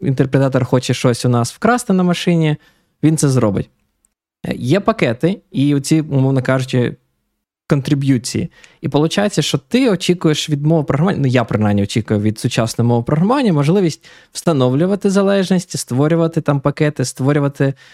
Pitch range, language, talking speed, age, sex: 125-160 Hz, Ukrainian, 140 wpm, 20-39, male